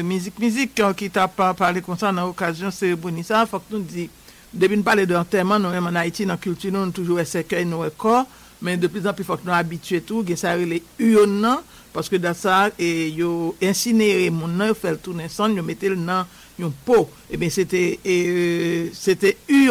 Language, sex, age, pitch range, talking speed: English, male, 60-79, 175-200 Hz, 145 wpm